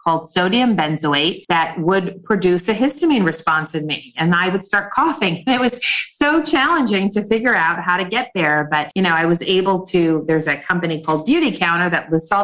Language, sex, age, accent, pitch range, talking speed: English, female, 40-59, American, 170-215 Hz, 205 wpm